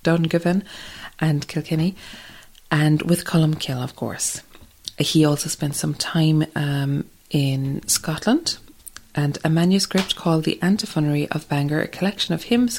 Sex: female